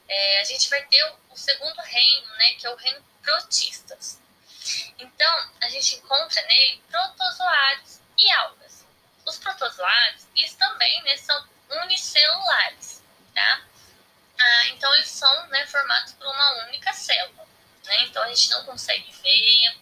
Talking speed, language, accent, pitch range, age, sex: 150 wpm, Portuguese, Brazilian, 245-325 Hz, 10-29, female